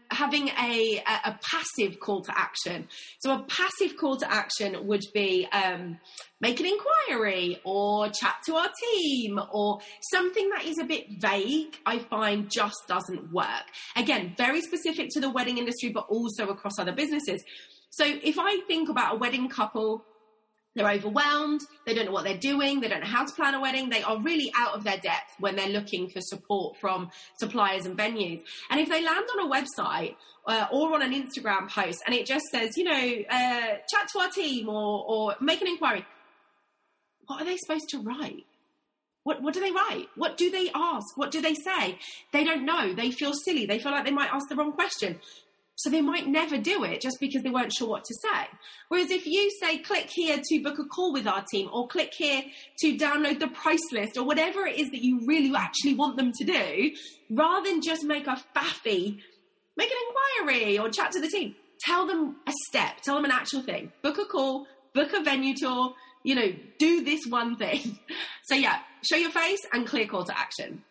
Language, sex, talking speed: English, female, 205 wpm